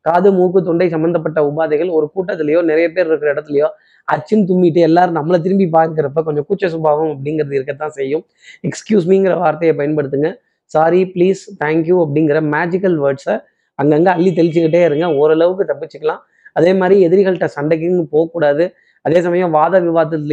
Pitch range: 150-180 Hz